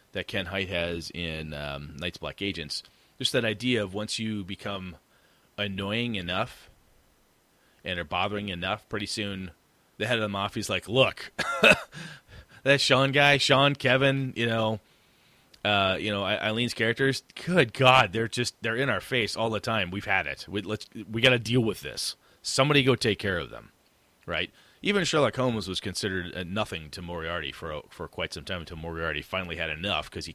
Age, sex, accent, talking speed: 30-49, male, American, 185 wpm